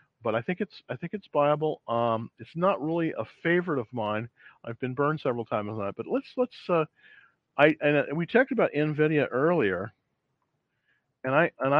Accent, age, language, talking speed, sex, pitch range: American, 50-69, English, 190 wpm, male, 115-155 Hz